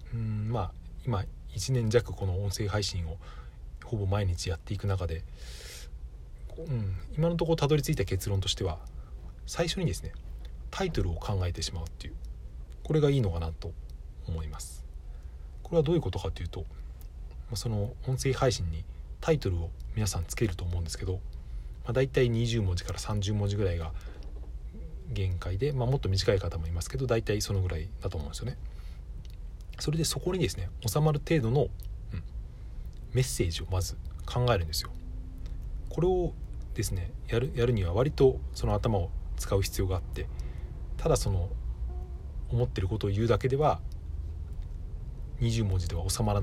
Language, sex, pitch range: Japanese, male, 80-115 Hz